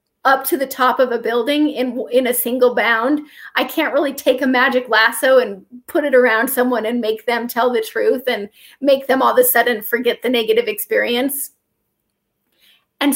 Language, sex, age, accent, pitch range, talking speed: English, female, 30-49, American, 245-300 Hz, 190 wpm